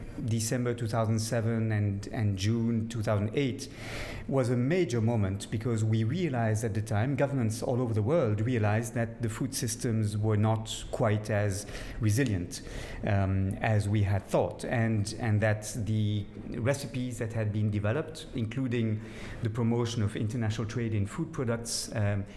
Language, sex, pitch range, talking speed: English, male, 110-125 Hz, 150 wpm